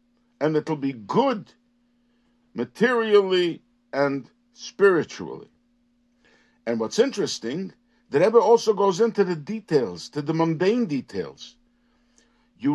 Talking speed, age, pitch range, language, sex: 110 wpm, 60-79, 145-235 Hz, English, male